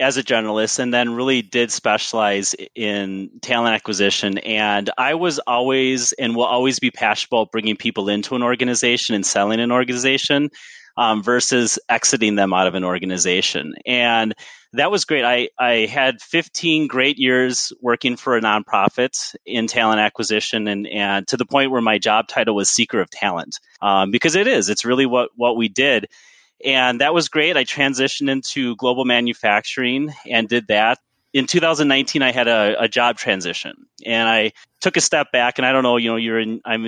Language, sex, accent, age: English, male, American, 30-49